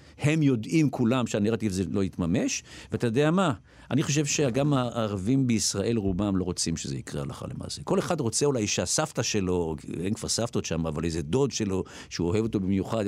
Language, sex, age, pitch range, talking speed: Hebrew, male, 50-69, 90-125 Hz, 185 wpm